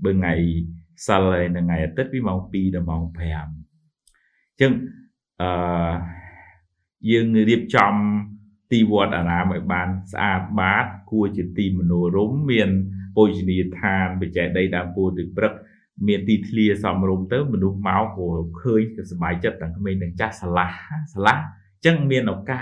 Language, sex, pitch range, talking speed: English, male, 85-105 Hz, 90 wpm